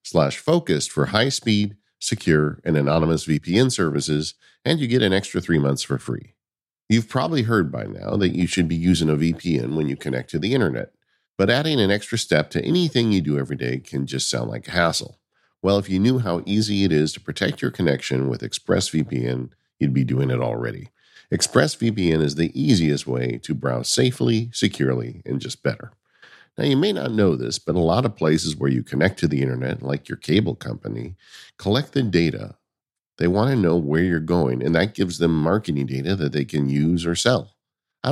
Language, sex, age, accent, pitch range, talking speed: English, male, 50-69, American, 70-105 Hz, 205 wpm